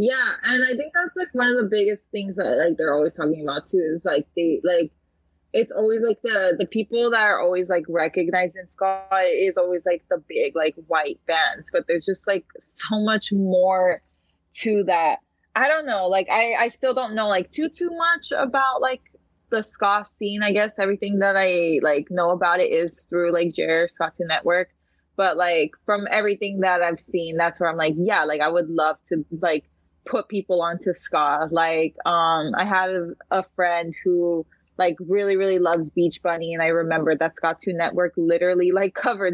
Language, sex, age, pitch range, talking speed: English, female, 20-39, 170-215 Hz, 200 wpm